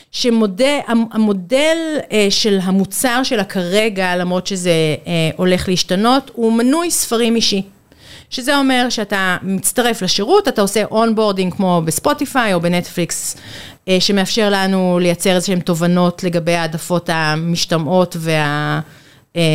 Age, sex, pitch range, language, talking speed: 40-59, female, 185-265 Hz, Hebrew, 105 wpm